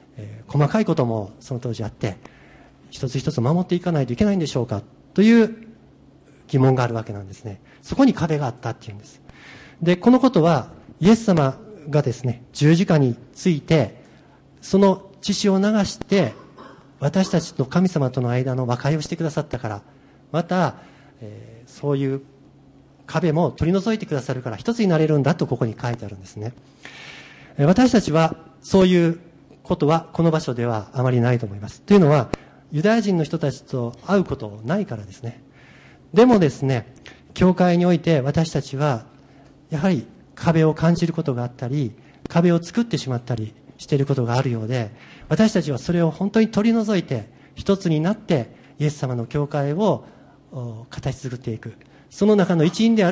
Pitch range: 125-170 Hz